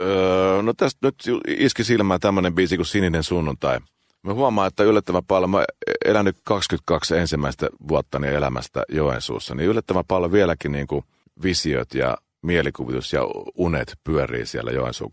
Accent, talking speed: native, 145 wpm